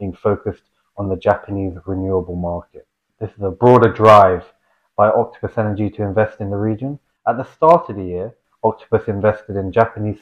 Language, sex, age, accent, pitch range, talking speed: English, male, 30-49, British, 95-115 Hz, 175 wpm